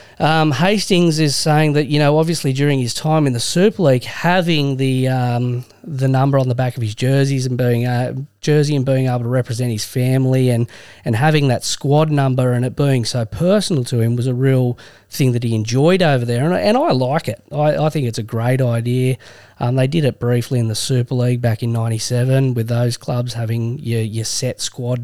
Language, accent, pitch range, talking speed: English, Australian, 115-135 Hz, 220 wpm